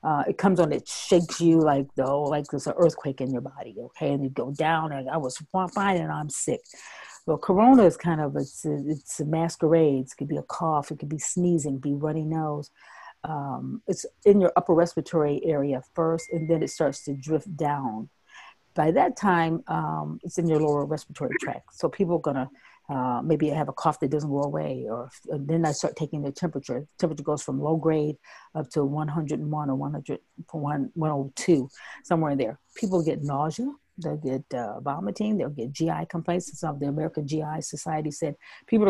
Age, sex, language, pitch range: 40-59, female, English, 145-175 Hz